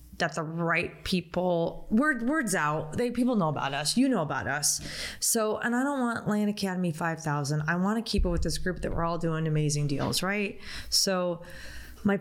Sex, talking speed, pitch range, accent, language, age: female, 195 wpm, 165-220 Hz, American, English, 20-39